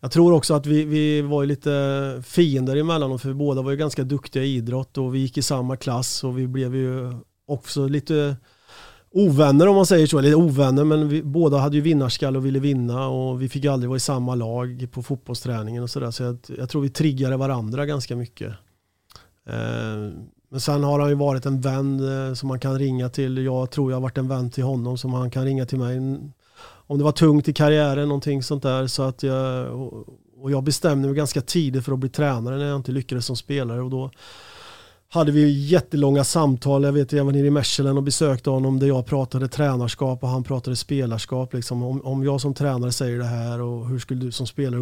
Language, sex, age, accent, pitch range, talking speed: Swedish, male, 30-49, native, 125-145 Hz, 225 wpm